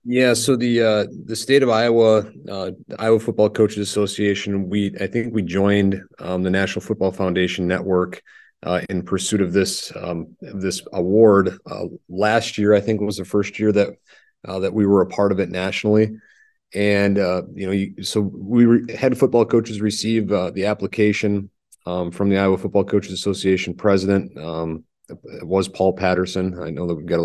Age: 30-49